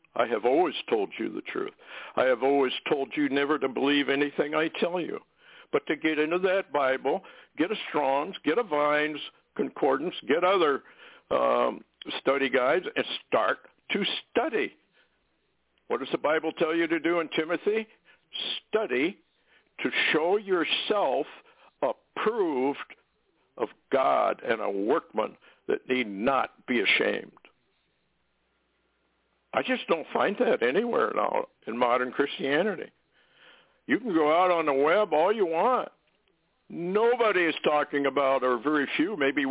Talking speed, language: 145 wpm, English